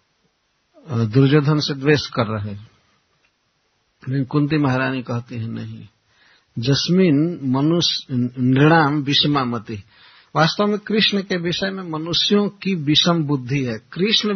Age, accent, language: 60-79, native, Hindi